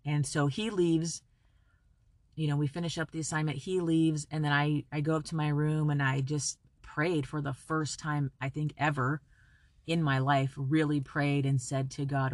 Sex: female